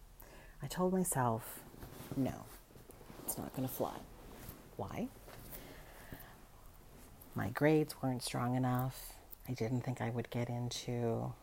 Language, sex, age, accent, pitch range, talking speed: English, female, 40-59, American, 125-180 Hz, 115 wpm